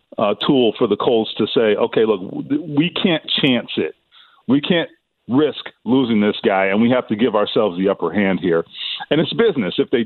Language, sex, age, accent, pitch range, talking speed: English, male, 40-59, American, 115-150 Hz, 205 wpm